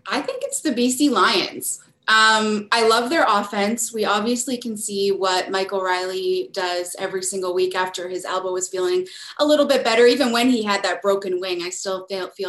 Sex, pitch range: female, 190-230 Hz